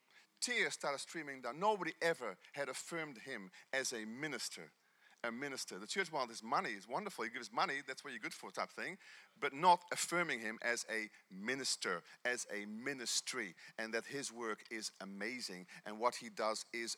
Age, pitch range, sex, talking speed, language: 40-59, 160-250 Hz, male, 185 wpm, English